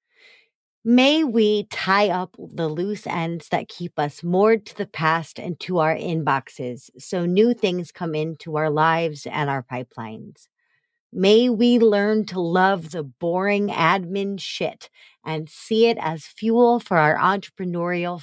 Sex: female